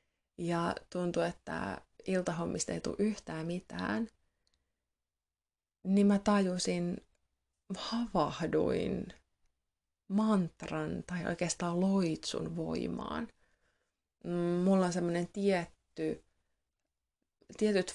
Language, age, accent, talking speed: Finnish, 20-39, native, 75 wpm